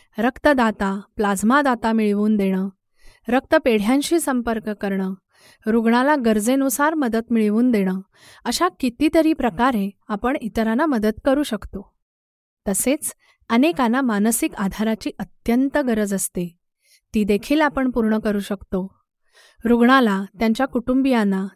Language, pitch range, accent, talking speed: Marathi, 205-265 Hz, native, 95 wpm